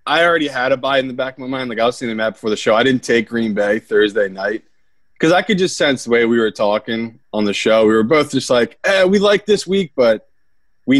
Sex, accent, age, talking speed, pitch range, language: male, American, 20-39, 285 wpm, 110-140 Hz, English